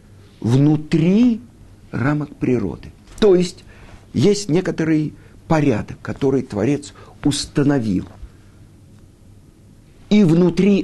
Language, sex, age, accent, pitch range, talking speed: Russian, male, 50-69, native, 100-160 Hz, 70 wpm